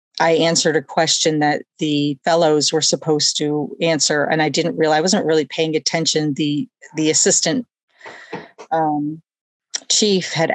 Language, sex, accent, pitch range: English, female, American, 150-170 Hz